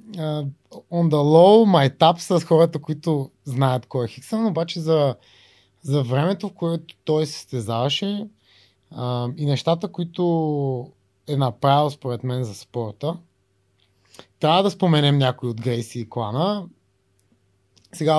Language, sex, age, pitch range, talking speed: Bulgarian, male, 20-39, 115-160 Hz, 130 wpm